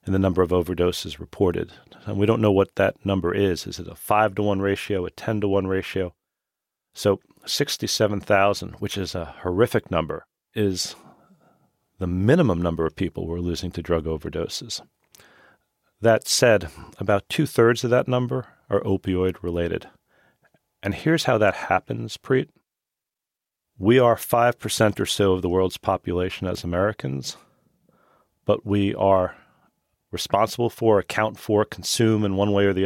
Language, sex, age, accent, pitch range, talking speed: English, male, 40-59, American, 90-105 Hz, 145 wpm